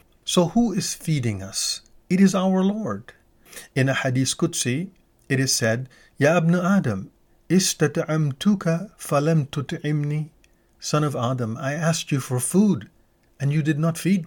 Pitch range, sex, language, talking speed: 125-170 Hz, male, English, 145 wpm